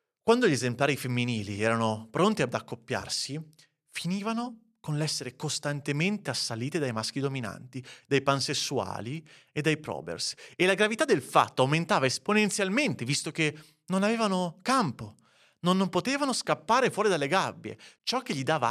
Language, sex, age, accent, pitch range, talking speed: Italian, male, 30-49, native, 125-180 Hz, 140 wpm